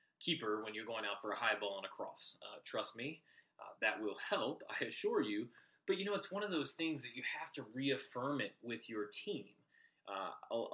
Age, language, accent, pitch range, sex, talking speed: 30-49, English, American, 110-140 Hz, male, 225 wpm